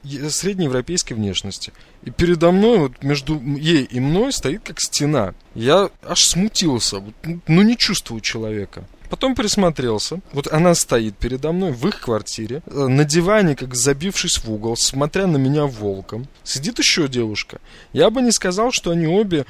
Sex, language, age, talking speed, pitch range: male, Russian, 20-39, 155 wpm, 120-175 Hz